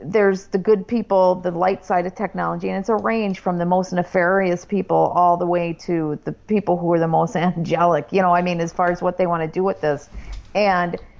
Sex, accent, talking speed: female, American, 235 wpm